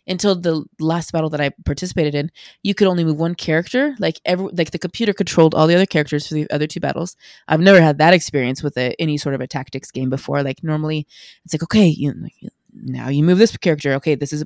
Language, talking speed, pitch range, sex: English, 235 wpm, 145-180 Hz, female